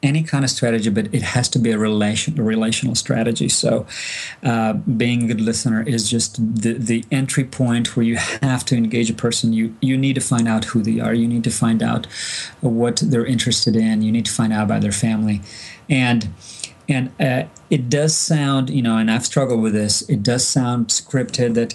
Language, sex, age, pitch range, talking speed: English, male, 30-49, 110-130 Hz, 210 wpm